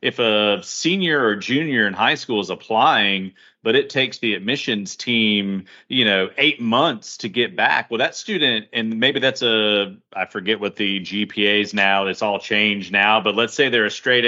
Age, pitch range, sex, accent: 30-49, 105-125 Hz, male, American